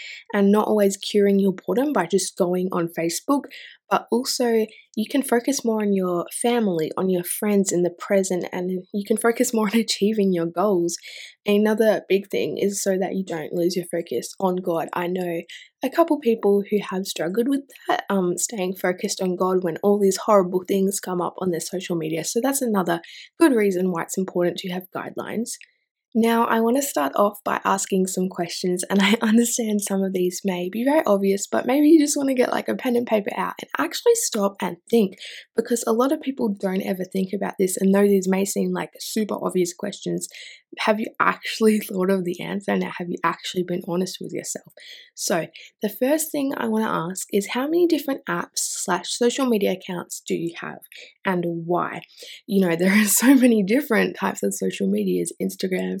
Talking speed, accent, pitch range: 205 wpm, Australian, 180-230 Hz